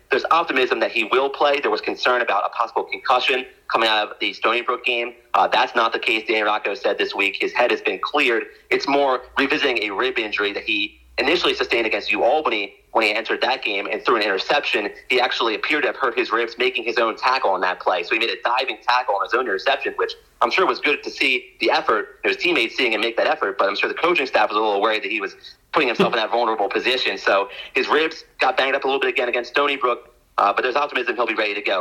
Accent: American